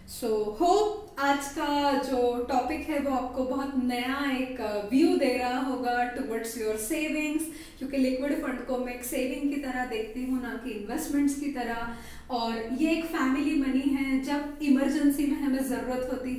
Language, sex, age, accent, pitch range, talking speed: Hindi, female, 10-29, native, 255-300 Hz, 175 wpm